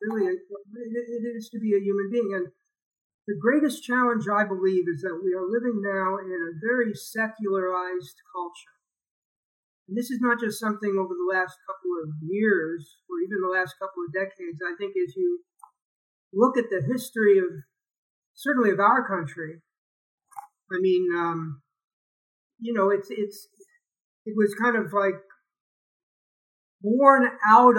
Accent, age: American, 50-69